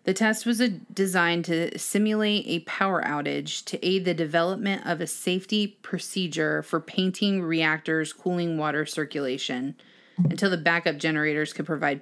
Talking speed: 145 wpm